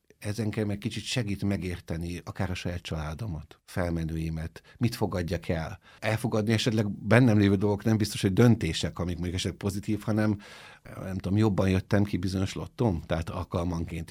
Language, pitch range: Hungarian, 85-105 Hz